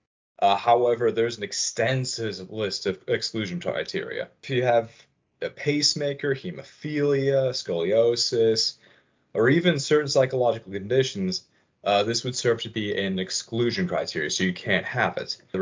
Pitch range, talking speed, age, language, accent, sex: 100-135 Hz, 140 wpm, 30-49, English, American, male